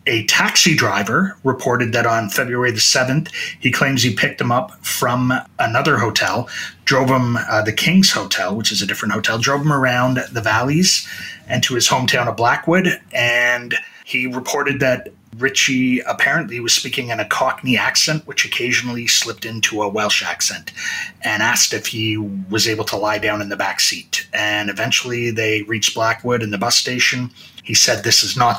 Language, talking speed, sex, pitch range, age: English, 180 wpm, male, 110-130 Hz, 30-49